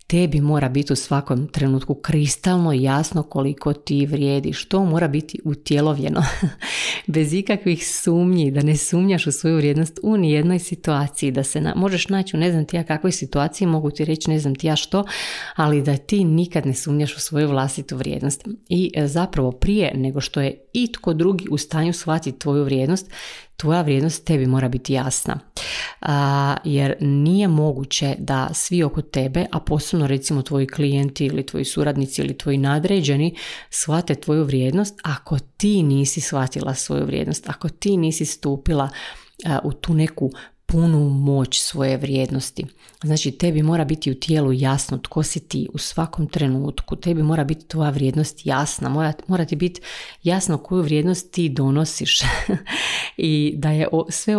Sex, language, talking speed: female, Croatian, 165 wpm